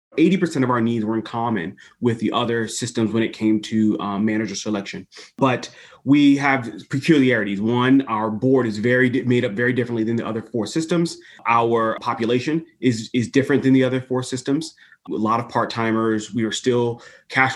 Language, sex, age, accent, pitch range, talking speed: English, male, 30-49, American, 115-140 Hz, 180 wpm